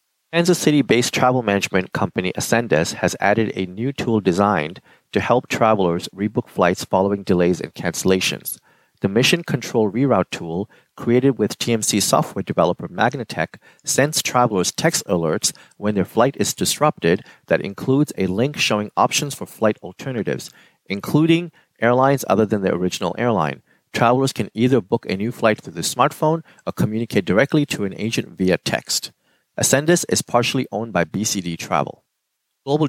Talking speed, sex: 150 wpm, male